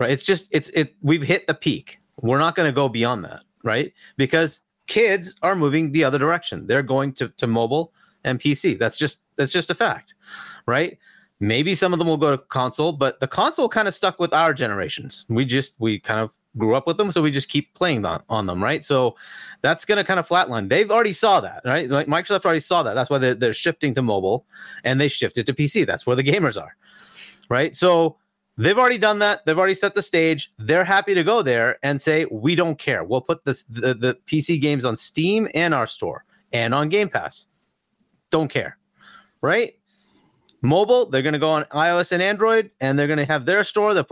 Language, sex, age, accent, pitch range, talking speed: English, male, 30-49, American, 135-185 Hz, 225 wpm